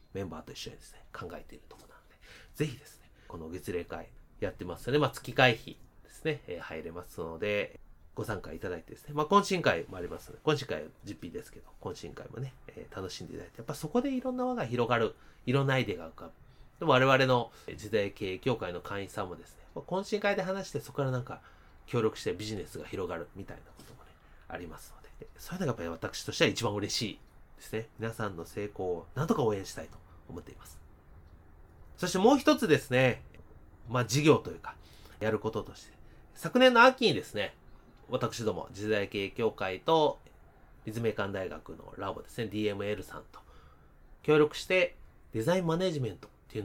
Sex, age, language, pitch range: male, 30-49, Japanese, 90-150 Hz